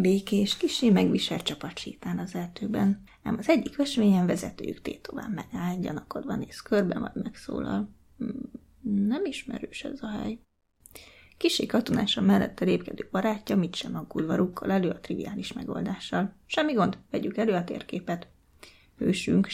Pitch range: 180-235 Hz